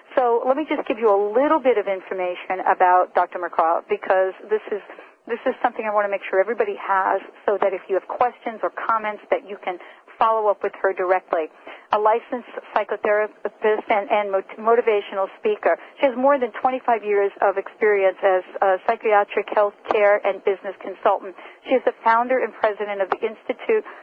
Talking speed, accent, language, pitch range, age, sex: 185 wpm, American, English, 195-250 Hz, 50-69, female